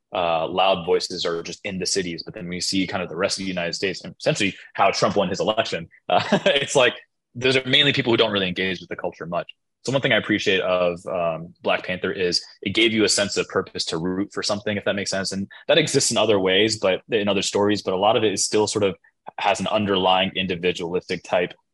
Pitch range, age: 90-100 Hz, 20-39